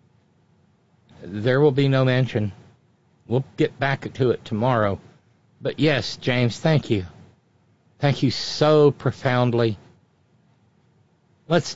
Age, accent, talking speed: 60-79, American, 105 wpm